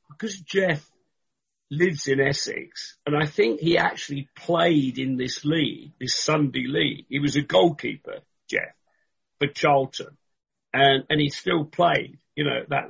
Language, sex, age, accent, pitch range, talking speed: English, male, 50-69, British, 145-175 Hz, 155 wpm